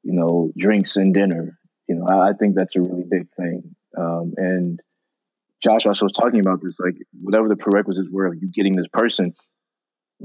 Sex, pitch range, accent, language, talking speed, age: male, 90-100 Hz, American, English, 205 wpm, 20-39